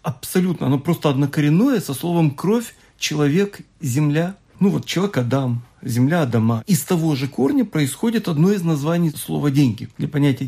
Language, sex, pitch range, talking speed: Russian, male, 145-195 Hz, 155 wpm